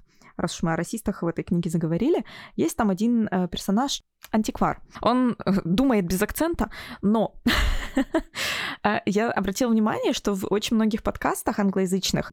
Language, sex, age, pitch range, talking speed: Russian, female, 20-39, 170-250 Hz, 130 wpm